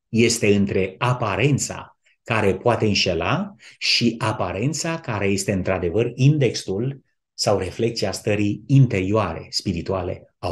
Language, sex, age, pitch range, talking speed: Romanian, male, 30-49, 95-125 Hz, 105 wpm